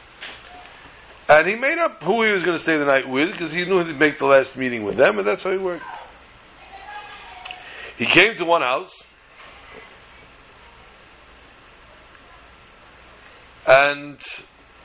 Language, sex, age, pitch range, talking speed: English, male, 60-79, 130-190 Hz, 135 wpm